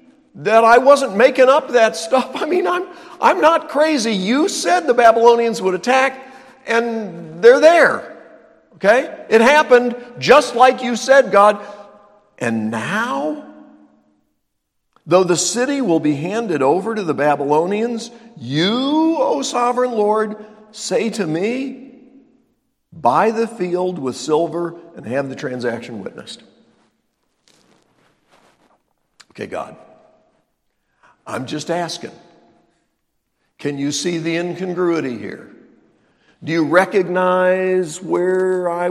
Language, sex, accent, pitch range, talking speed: English, male, American, 175-250 Hz, 115 wpm